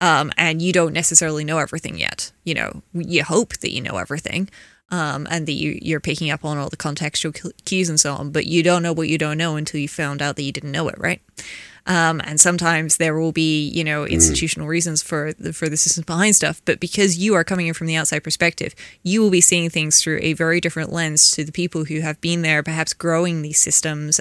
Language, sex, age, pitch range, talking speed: English, female, 20-39, 155-170 Hz, 240 wpm